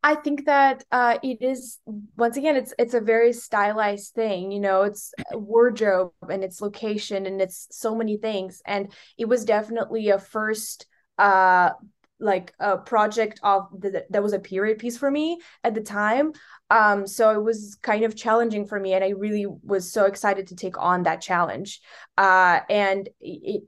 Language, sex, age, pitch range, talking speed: English, female, 20-39, 190-230 Hz, 180 wpm